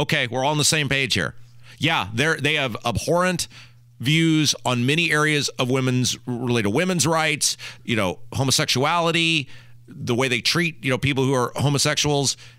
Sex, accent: male, American